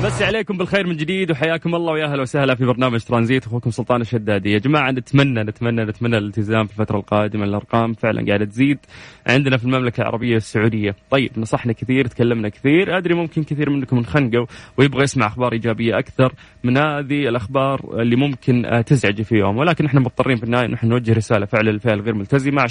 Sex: male